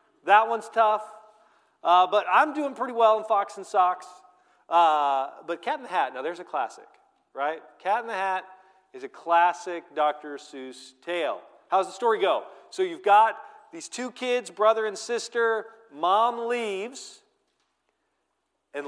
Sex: male